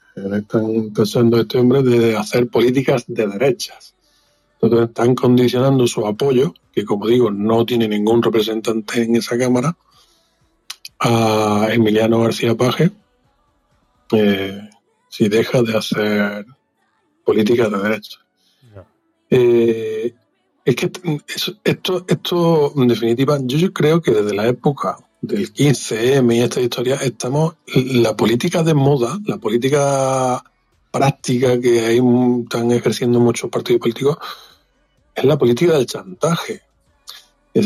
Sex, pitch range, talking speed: male, 115-135 Hz, 125 wpm